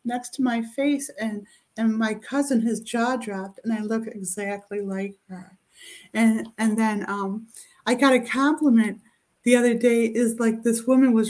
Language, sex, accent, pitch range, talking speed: English, female, American, 220-260 Hz, 175 wpm